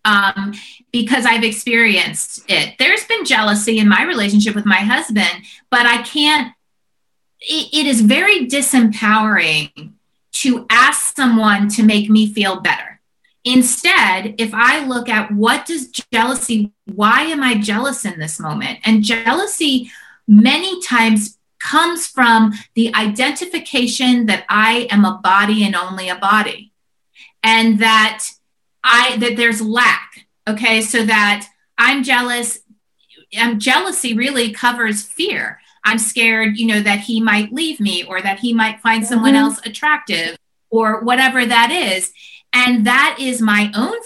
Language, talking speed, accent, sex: English, 140 wpm, American, female